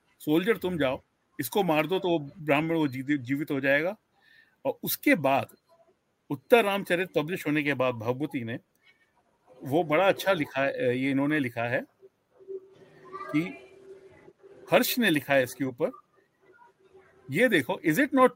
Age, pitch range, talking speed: 50-69, 155-250 Hz, 140 wpm